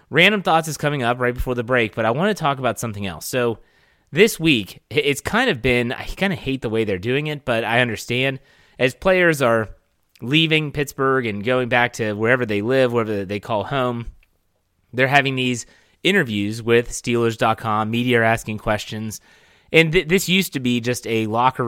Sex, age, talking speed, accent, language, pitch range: male, 30-49, 195 wpm, American, English, 110-135 Hz